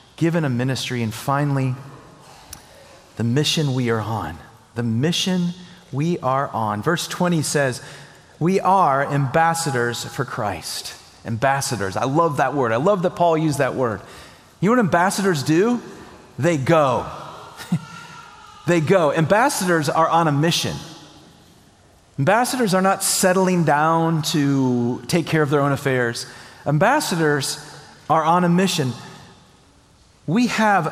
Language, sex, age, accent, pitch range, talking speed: English, male, 40-59, American, 130-170 Hz, 130 wpm